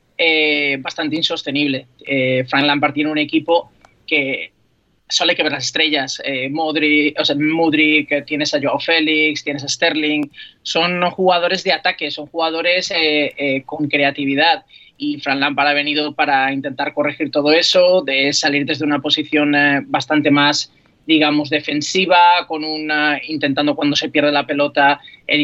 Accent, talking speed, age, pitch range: Spanish, 155 wpm, 20-39, 145-170 Hz